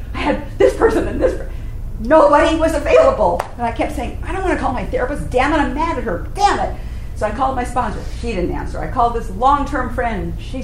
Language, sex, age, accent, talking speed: English, female, 50-69, American, 245 wpm